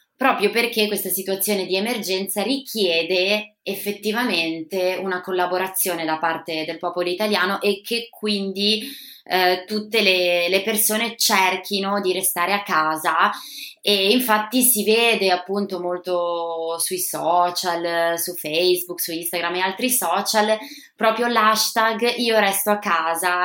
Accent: native